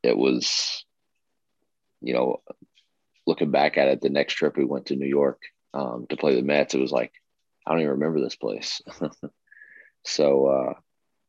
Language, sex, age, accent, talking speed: English, male, 30-49, American, 170 wpm